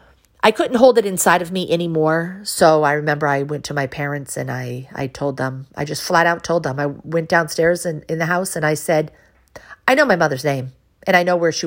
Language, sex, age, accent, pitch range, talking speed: English, female, 40-59, American, 135-180 Hz, 240 wpm